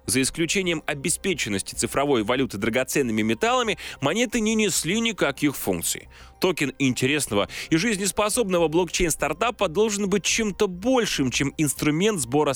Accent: native